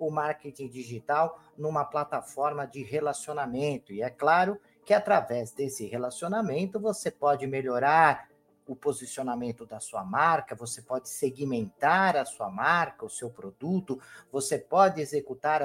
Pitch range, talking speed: 130-185 Hz, 130 wpm